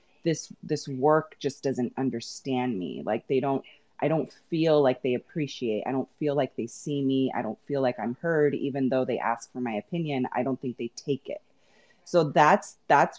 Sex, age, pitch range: female, 30-49, 130-170 Hz